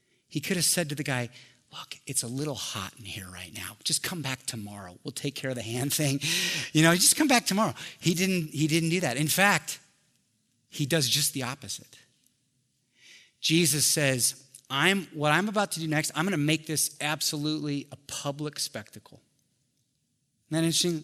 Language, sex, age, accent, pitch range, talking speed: English, male, 30-49, American, 120-155 Hz, 190 wpm